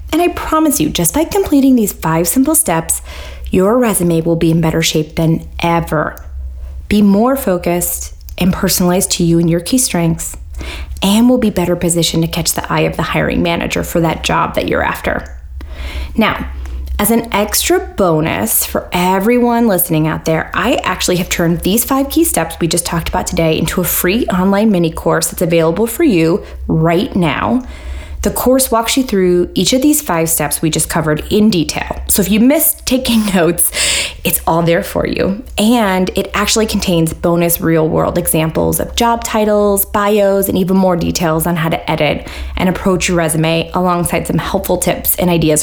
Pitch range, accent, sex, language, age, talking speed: 160-210 Hz, American, female, English, 20-39, 185 wpm